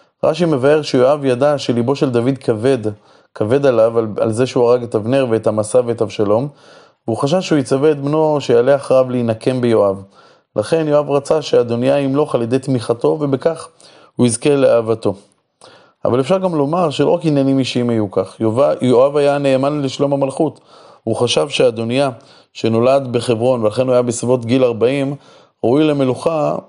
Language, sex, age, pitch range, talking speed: Hebrew, male, 20-39, 115-135 Hz, 160 wpm